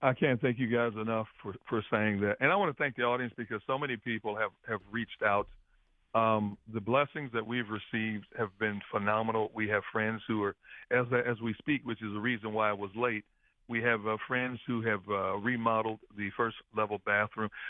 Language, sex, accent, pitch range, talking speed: English, male, American, 110-125 Hz, 215 wpm